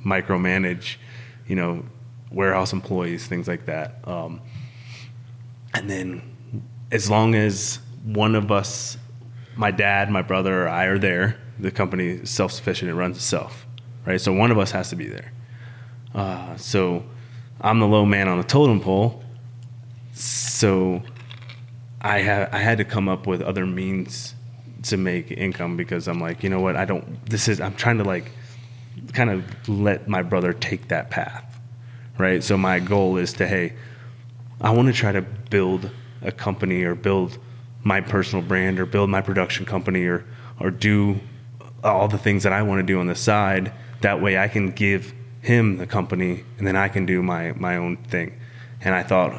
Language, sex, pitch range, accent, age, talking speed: English, male, 95-120 Hz, American, 20-39, 175 wpm